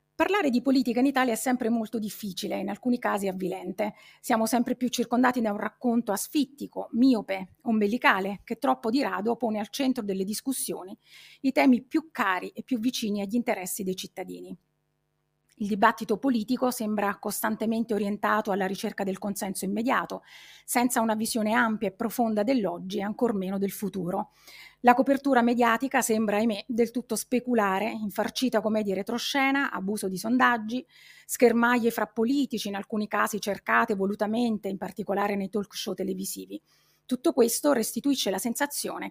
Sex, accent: female, native